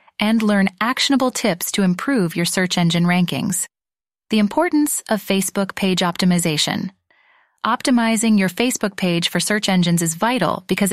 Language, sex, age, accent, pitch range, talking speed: English, female, 30-49, American, 185-225 Hz, 145 wpm